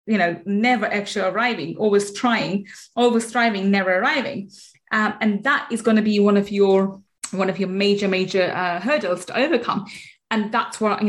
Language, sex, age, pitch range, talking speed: English, female, 30-49, 205-260 Hz, 185 wpm